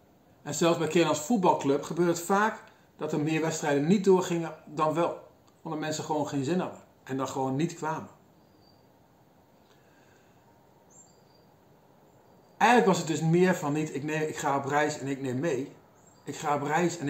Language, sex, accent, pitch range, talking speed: Dutch, male, Dutch, 145-175 Hz, 170 wpm